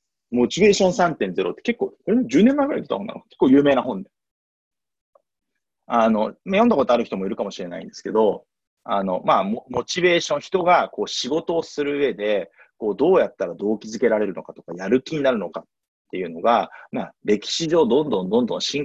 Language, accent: Japanese, native